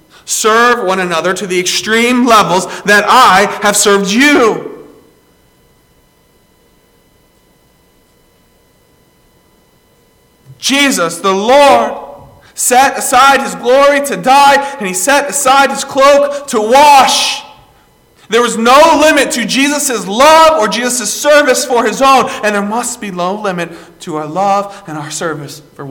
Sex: male